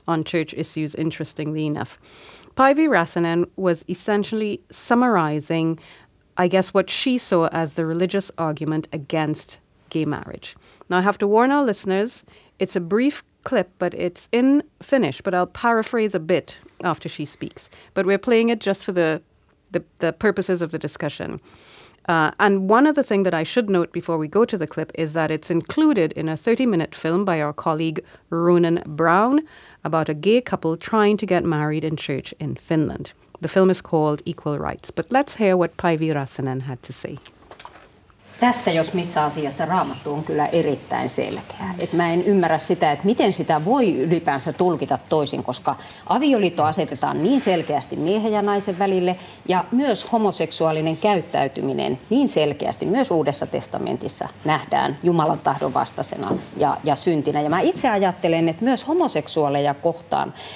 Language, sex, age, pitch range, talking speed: Finnish, female, 30-49, 160-205 Hz, 165 wpm